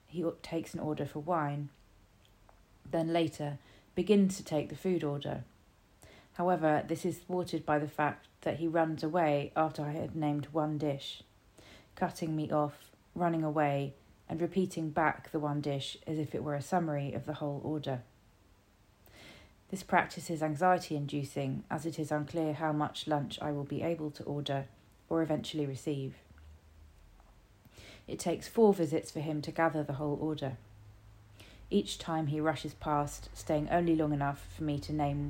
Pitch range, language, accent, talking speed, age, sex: 110-160 Hz, English, British, 165 wpm, 30-49, female